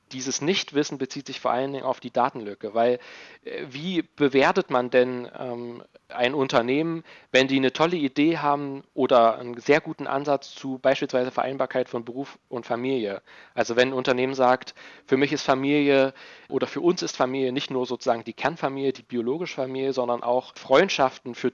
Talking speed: 175 wpm